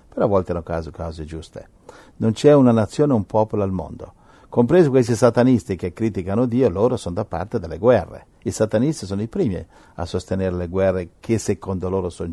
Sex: male